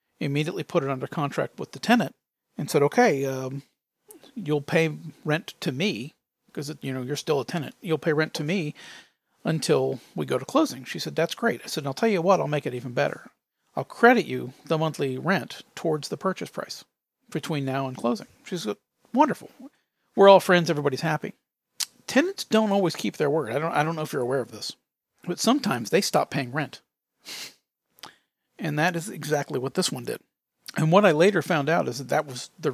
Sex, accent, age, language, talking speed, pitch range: male, American, 40-59, English, 205 wpm, 135-180 Hz